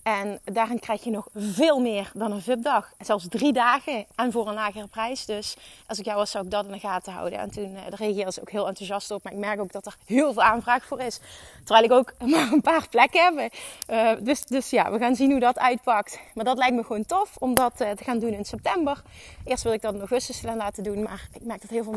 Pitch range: 210-260 Hz